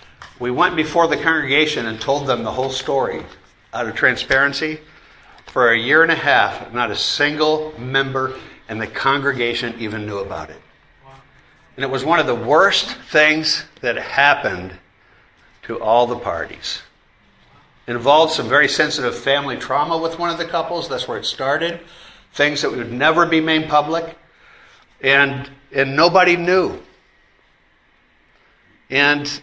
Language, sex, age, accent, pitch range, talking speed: English, male, 60-79, American, 130-165 Hz, 150 wpm